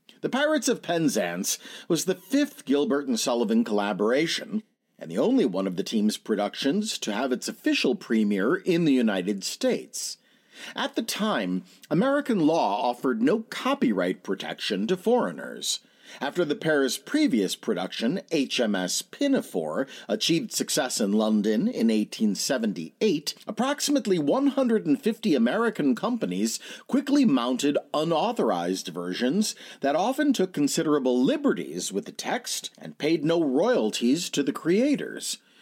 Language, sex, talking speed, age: English, male, 125 wpm, 50-69